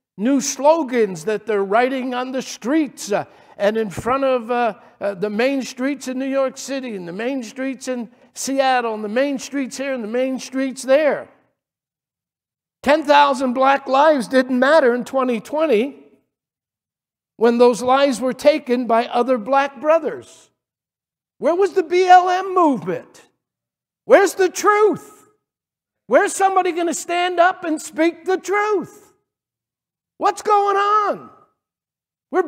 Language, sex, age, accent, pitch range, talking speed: English, male, 60-79, American, 250-325 Hz, 140 wpm